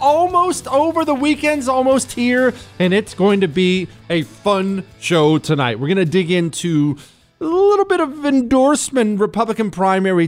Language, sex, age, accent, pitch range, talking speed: English, male, 40-59, American, 130-200 Hz, 160 wpm